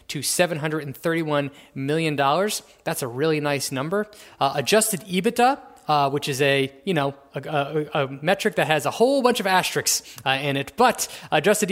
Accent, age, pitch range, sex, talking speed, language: American, 20-39, 140-195 Hz, male, 185 wpm, English